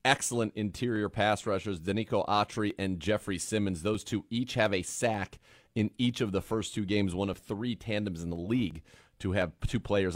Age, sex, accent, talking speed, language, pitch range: 30-49, male, American, 195 wpm, English, 95-110 Hz